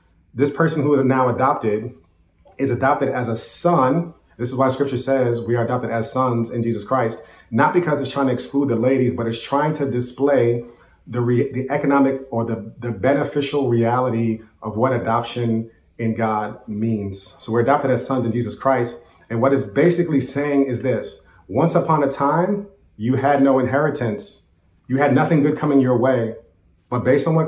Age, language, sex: 30-49, English, male